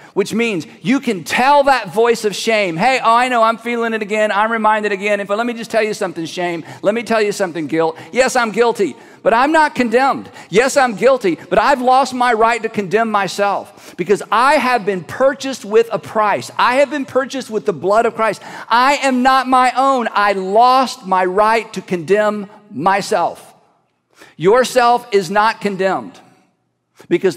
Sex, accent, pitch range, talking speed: male, American, 175-225 Hz, 190 wpm